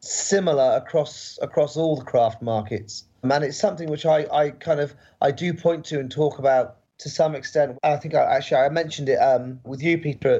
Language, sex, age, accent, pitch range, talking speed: English, male, 30-49, British, 120-150 Hz, 210 wpm